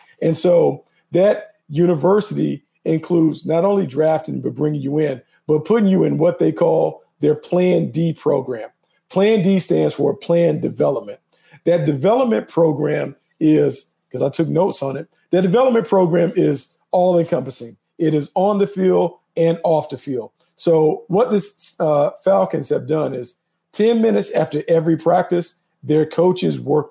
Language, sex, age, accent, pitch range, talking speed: English, male, 50-69, American, 140-175 Hz, 155 wpm